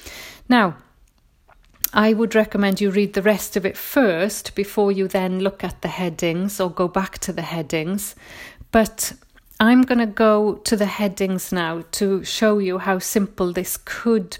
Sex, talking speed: female, 165 wpm